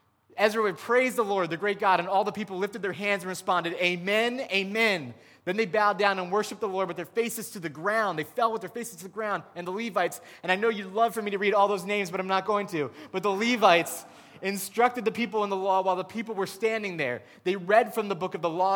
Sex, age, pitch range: male, 30-49, 170-220 Hz